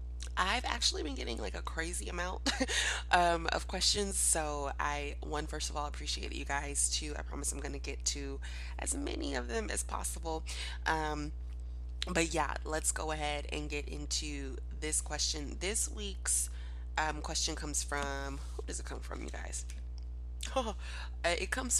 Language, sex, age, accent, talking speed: English, female, 20-39, American, 165 wpm